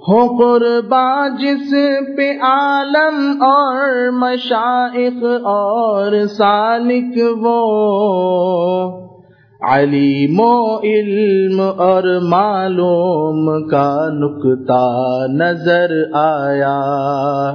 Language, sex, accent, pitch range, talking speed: English, male, Indian, 170-245 Hz, 60 wpm